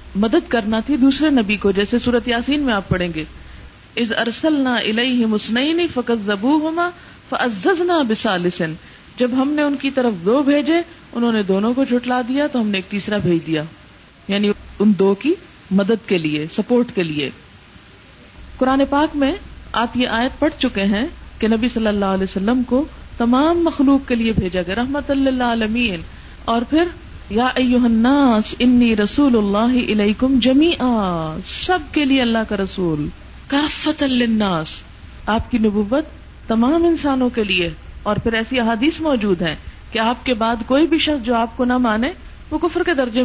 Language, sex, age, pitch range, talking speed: Urdu, female, 50-69, 200-265 Hz, 170 wpm